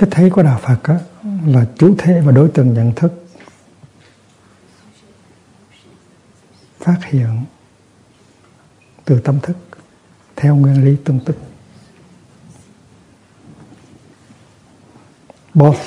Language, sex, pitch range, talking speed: Vietnamese, male, 120-150 Hz, 90 wpm